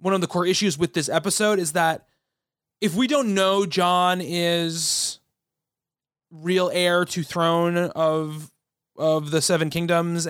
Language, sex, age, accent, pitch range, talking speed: English, male, 30-49, American, 160-195 Hz, 145 wpm